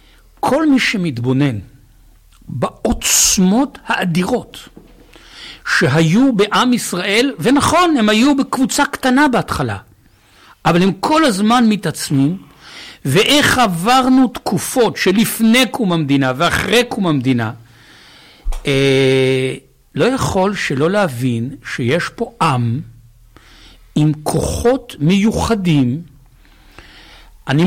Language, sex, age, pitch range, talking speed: Hebrew, male, 60-79, 145-230 Hz, 85 wpm